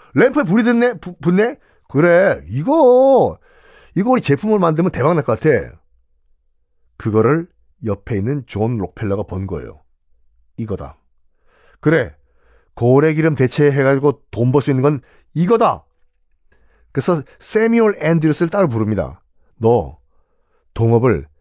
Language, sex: Korean, male